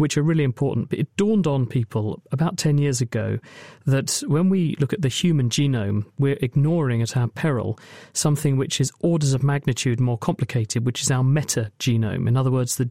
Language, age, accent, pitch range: English, 40-59, British, 120-150 Hz